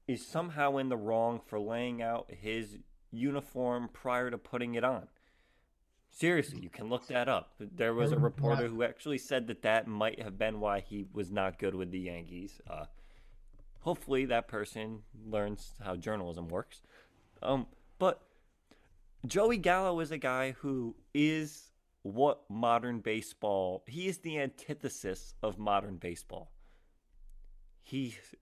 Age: 30-49